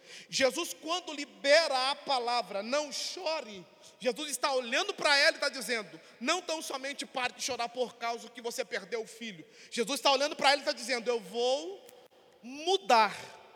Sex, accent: male, Brazilian